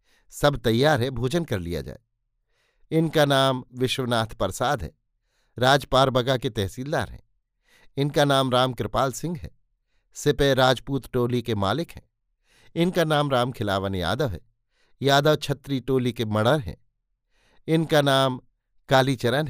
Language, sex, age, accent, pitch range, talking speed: Hindi, male, 50-69, native, 115-145 Hz, 130 wpm